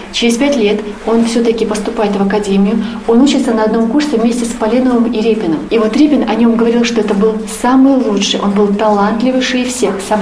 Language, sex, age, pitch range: Russian, female, 30-49, 210-235 Hz